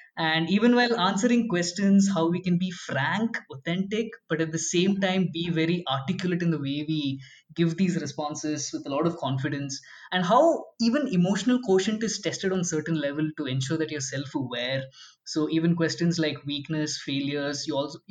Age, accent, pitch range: 20-39, Indian, 150-185 Hz